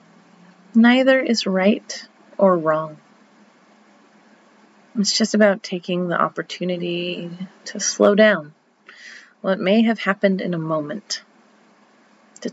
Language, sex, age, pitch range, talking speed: English, female, 30-49, 180-225 Hz, 105 wpm